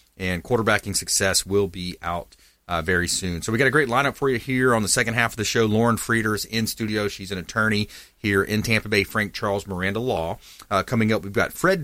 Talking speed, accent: 235 wpm, American